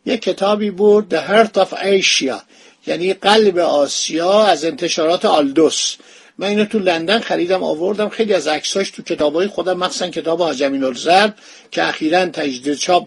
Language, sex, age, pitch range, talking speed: Persian, male, 50-69, 165-220 Hz, 155 wpm